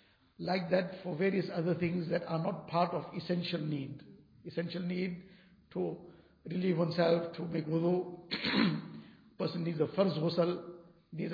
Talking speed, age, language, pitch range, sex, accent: 145 wpm, 60-79, English, 165-185 Hz, male, Indian